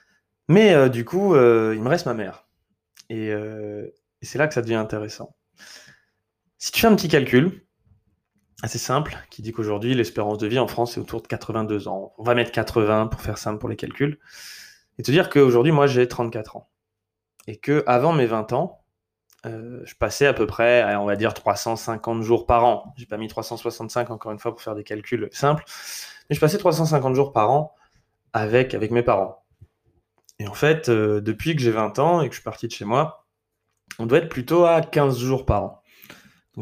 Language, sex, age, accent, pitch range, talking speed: French, male, 20-39, French, 110-140 Hz, 210 wpm